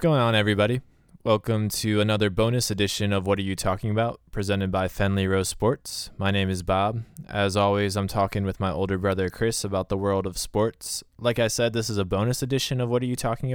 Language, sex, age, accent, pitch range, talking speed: English, male, 20-39, American, 95-110 Hz, 220 wpm